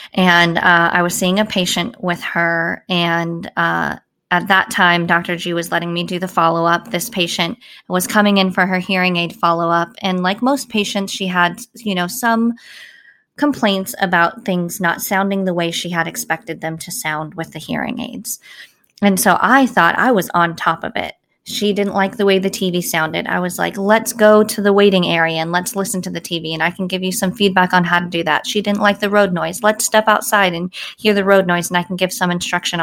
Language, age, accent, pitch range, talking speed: English, 20-39, American, 175-210 Hz, 225 wpm